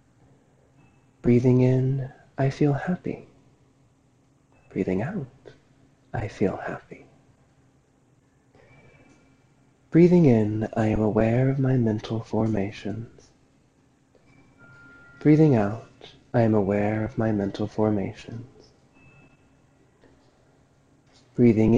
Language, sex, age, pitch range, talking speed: English, male, 30-49, 115-135 Hz, 80 wpm